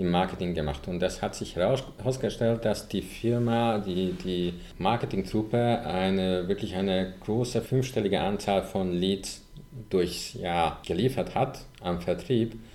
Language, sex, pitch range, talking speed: German, male, 85-105 Hz, 130 wpm